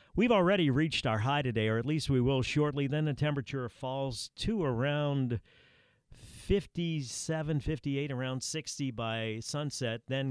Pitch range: 120-150 Hz